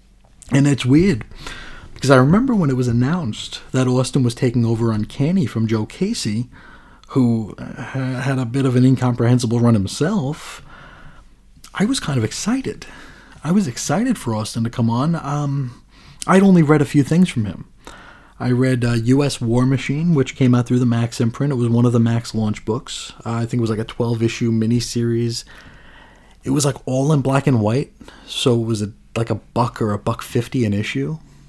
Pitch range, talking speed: 110-140 Hz, 190 wpm